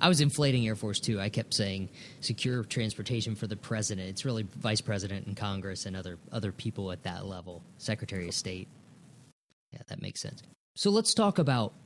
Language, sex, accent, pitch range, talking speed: English, male, American, 105-135 Hz, 190 wpm